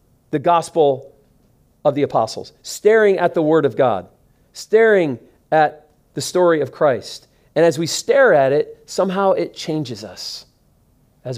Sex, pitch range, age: male, 120-165 Hz, 40-59